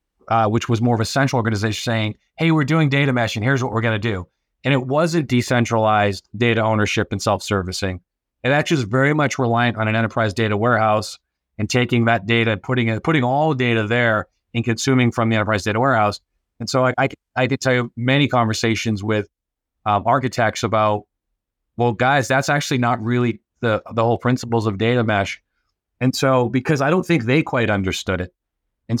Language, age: English, 30-49